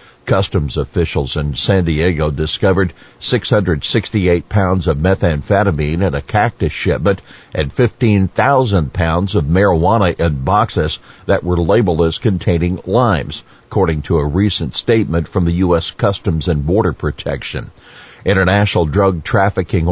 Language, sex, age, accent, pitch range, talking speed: English, male, 50-69, American, 85-105 Hz, 125 wpm